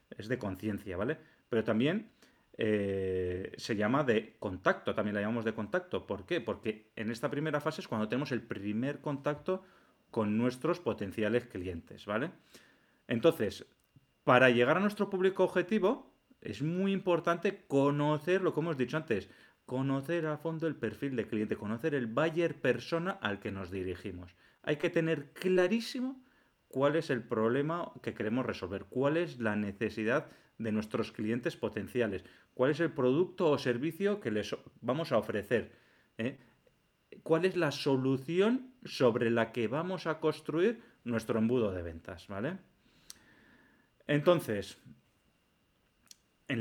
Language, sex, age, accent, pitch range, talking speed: Spanish, male, 30-49, Spanish, 110-165 Hz, 145 wpm